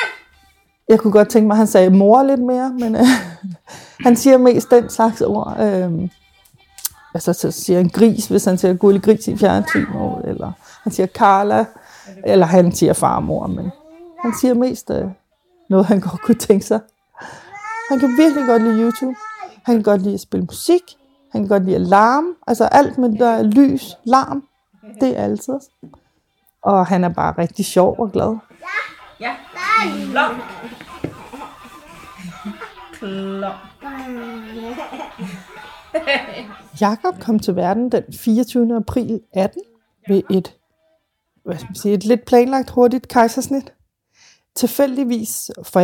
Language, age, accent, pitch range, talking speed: Danish, 30-49, native, 195-255 Hz, 145 wpm